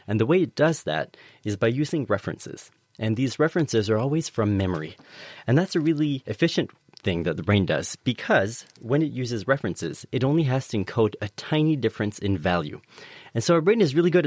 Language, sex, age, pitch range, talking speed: English, male, 30-49, 100-145 Hz, 205 wpm